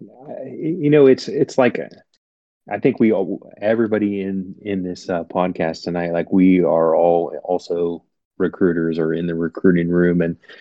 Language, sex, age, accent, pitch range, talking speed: English, male, 30-49, American, 85-90 Hz, 160 wpm